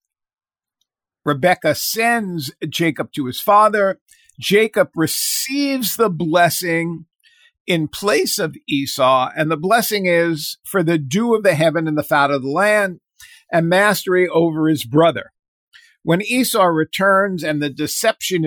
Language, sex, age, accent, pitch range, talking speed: English, male, 50-69, American, 155-195 Hz, 135 wpm